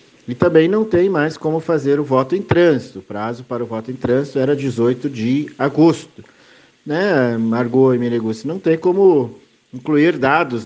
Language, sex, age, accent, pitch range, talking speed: Portuguese, male, 50-69, Brazilian, 125-170 Hz, 175 wpm